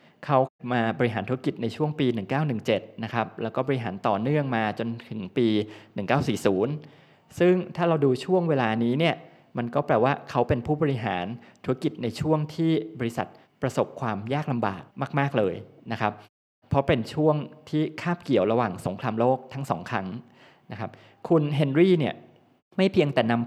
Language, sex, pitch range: Thai, male, 110-145 Hz